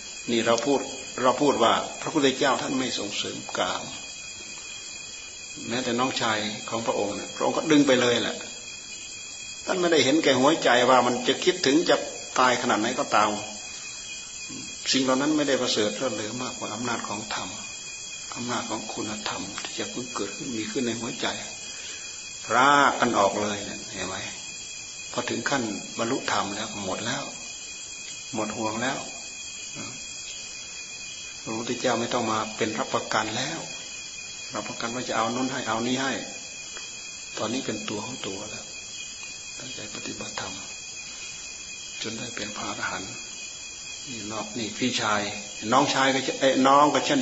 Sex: male